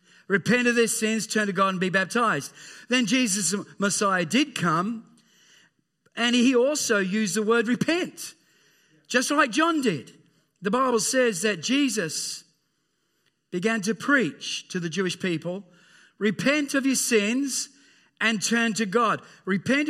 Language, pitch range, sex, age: English, 200-260 Hz, male, 40-59